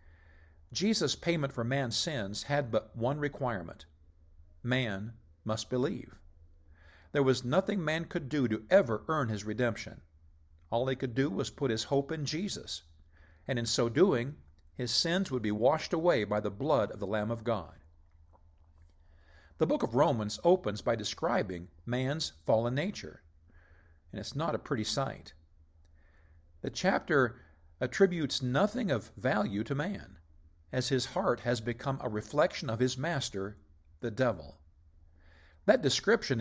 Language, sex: English, male